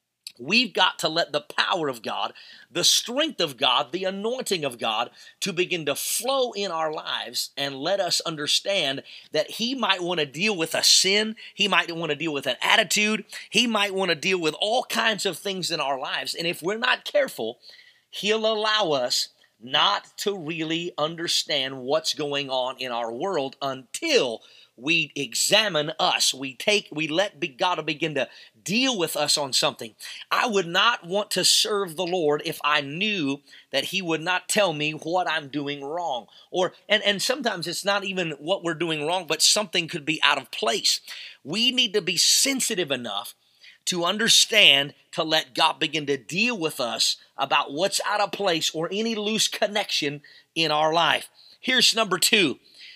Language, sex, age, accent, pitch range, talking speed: English, male, 30-49, American, 150-210 Hz, 180 wpm